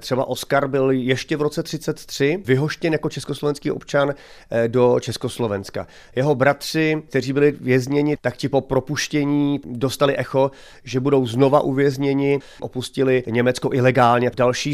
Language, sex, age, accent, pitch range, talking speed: Czech, male, 30-49, native, 120-135 Hz, 130 wpm